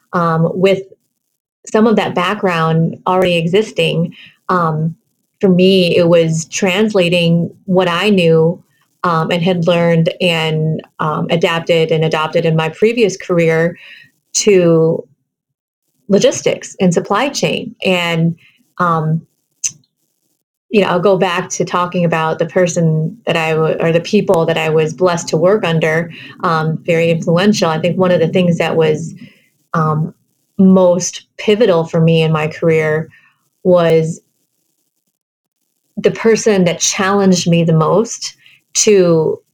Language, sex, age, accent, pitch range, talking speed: English, female, 30-49, American, 165-195 Hz, 130 wpm